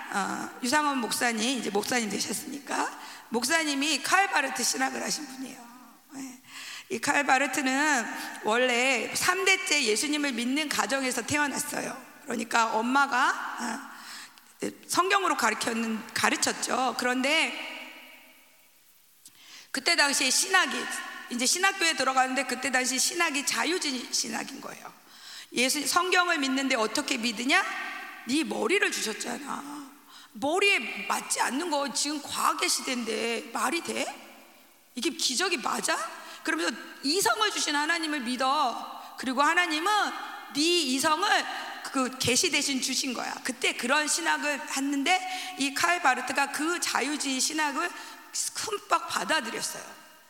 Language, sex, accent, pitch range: Korean, female, native, 260-345 Hz